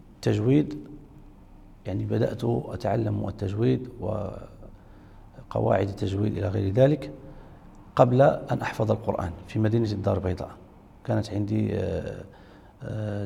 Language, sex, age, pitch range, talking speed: Arabic, male, 40-59, 95-115 Hz, 95 wpm